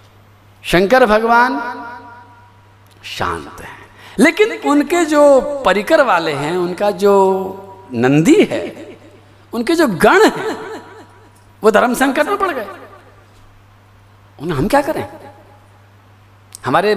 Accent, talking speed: native, 105 wpm